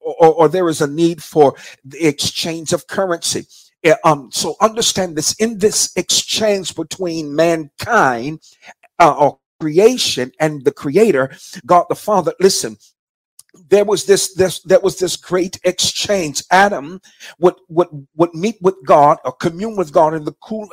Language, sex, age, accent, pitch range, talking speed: English, male, 50-69, American, 160-200 Hz, 155 wpm